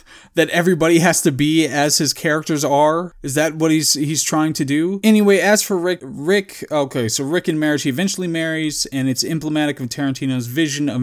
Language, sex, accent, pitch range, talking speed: English, male, American, 140-180 Hz, 200 wpm